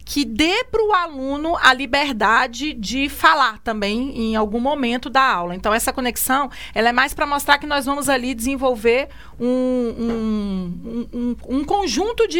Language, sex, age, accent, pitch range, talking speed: Portuguese, female, 40-59, Brazilian, 230-295 Hz, 150 wpm